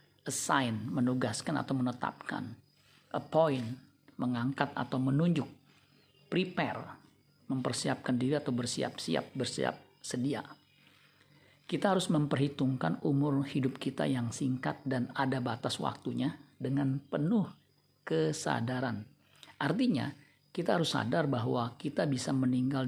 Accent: native